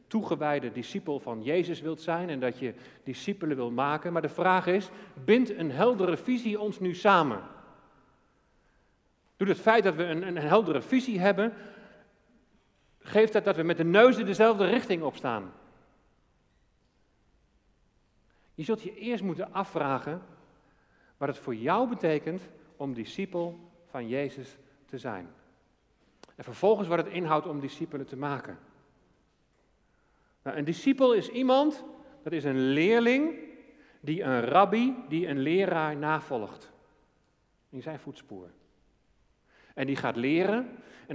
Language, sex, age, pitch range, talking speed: Dutch, male, 40-59, 135-200 Hz, 135 wpm